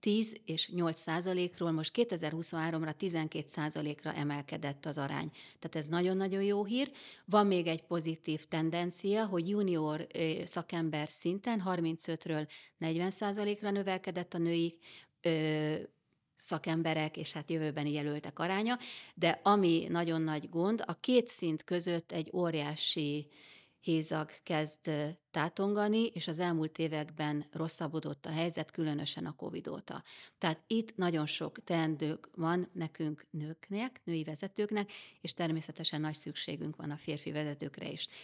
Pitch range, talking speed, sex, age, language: 155-180 Hz, 125 wpm, female, 30-49, Hungarian